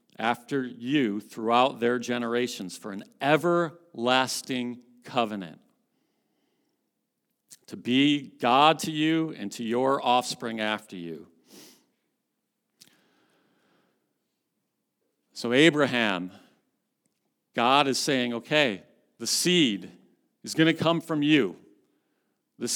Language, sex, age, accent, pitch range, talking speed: English, male, 50-69, American, 120-155 Hz, 90 wpm